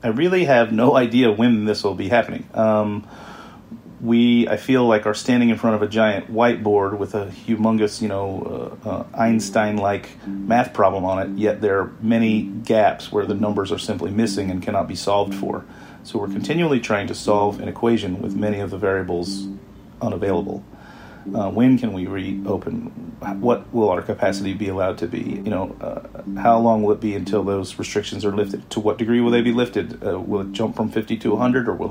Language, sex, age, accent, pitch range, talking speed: English, male, 40-59, American, 100-115 Hz, 205 wpm